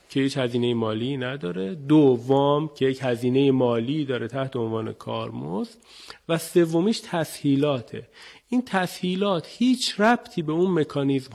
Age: 40-59